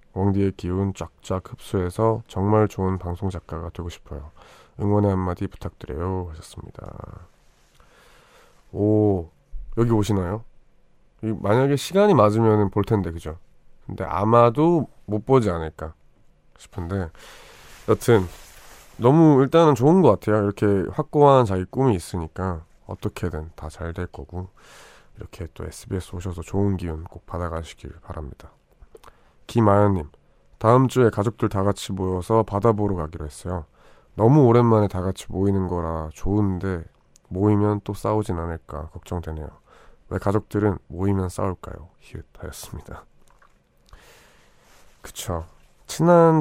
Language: Korean